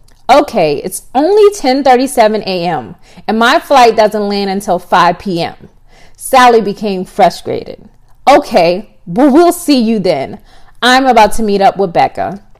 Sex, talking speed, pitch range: female, 135 wpm, 195-255 Hz